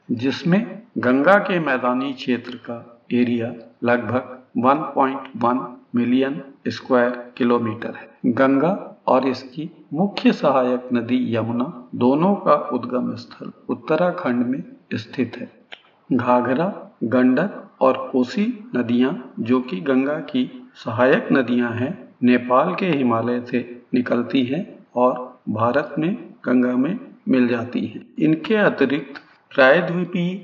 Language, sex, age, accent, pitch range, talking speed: Hindi, male, 50-69, native, 125-190 Hz, 110 wpm